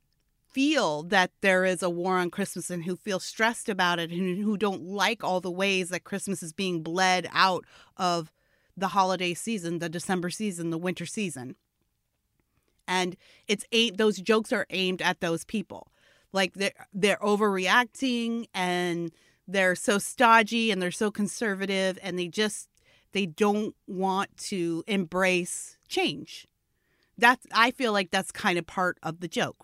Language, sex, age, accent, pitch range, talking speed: English, female, 30-49, American, 180-230 Hz, 160 wpm